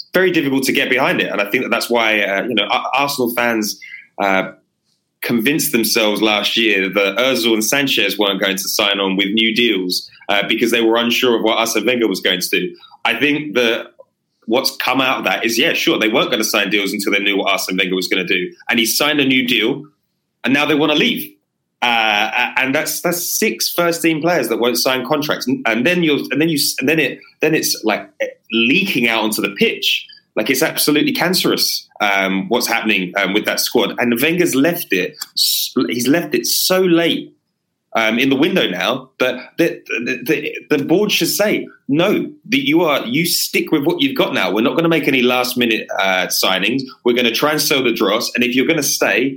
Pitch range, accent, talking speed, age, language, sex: 110-150 Hz, British, 220 wpm, 20-39, English, male